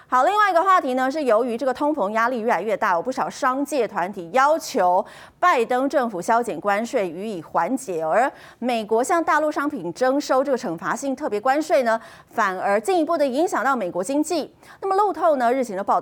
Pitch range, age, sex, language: 195-275 Hz, 30-49, female, Chinese